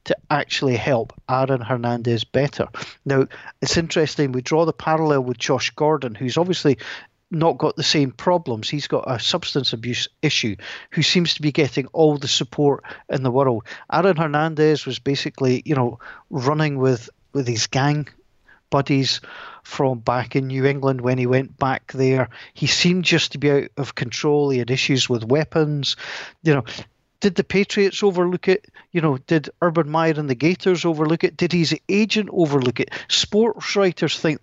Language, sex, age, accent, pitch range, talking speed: English, male, 40-59, British, 130-160 Hz, 175 wpm